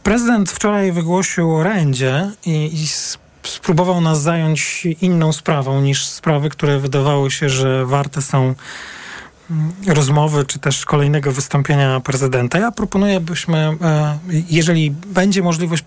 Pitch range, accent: 135-165 Hz, native